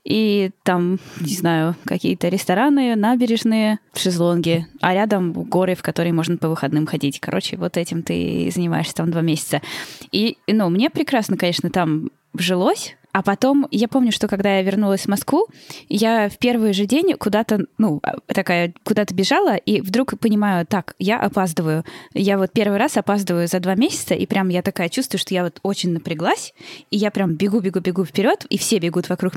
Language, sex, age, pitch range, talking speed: Russian, female, 10-29, 180-220 Hz, 180 wpm